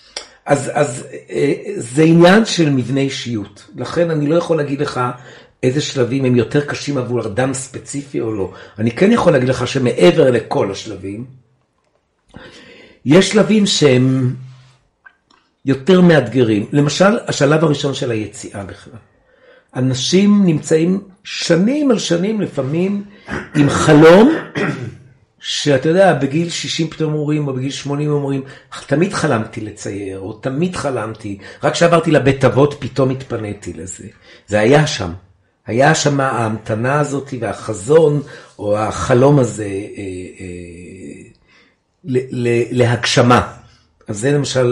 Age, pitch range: 60-79, 115-155 Hz